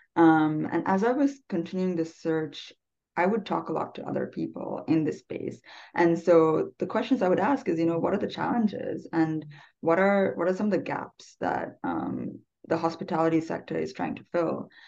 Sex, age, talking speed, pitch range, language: female, 20-39, 205 wpm, 155-195 Hz, English